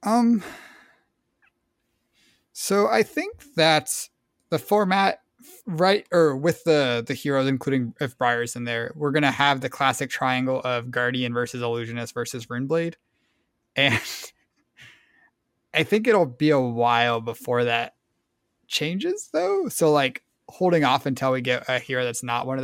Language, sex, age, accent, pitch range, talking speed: English, male, 20-39, American, 120-160 Hz, 145 wpm